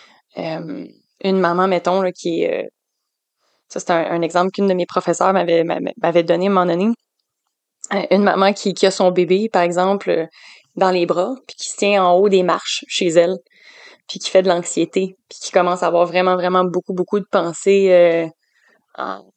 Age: 20-39